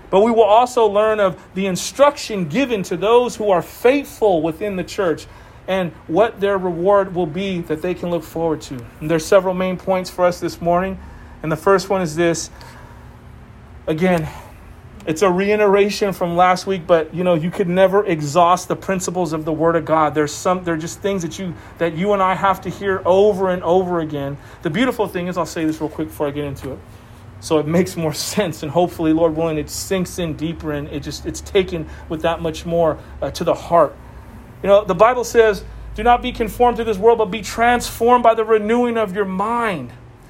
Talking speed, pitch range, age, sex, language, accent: 215 wpm, 165-220 Hz, 40-59, male, English, American